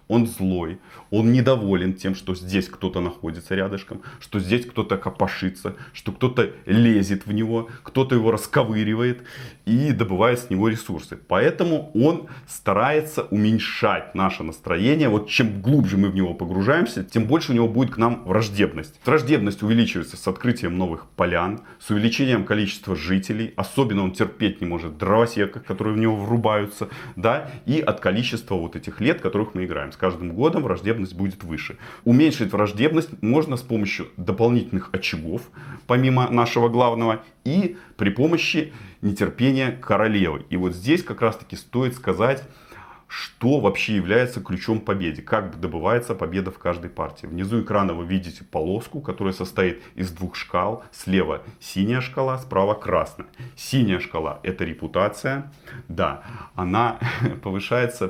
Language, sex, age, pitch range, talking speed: Russian, male, 30-49, 95-120 Hz, 145 wpm